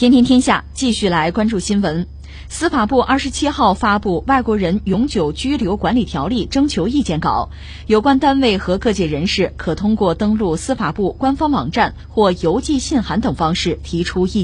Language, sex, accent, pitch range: Chinese, female, native, 175-250 Hz